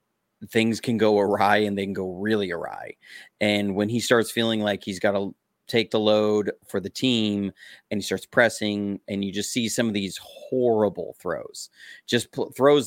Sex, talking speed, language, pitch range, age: male, 185 wpm, English, 100-120 Hz, 30-49